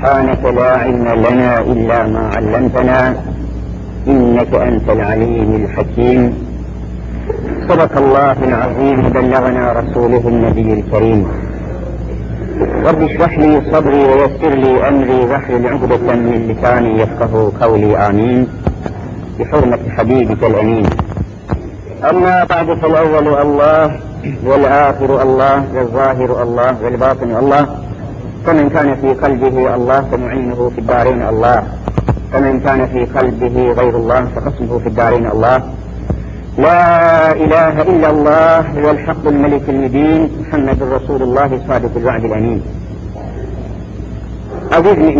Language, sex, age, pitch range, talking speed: Turkish, male, 50-69, 110-140 Hz, 105 wpm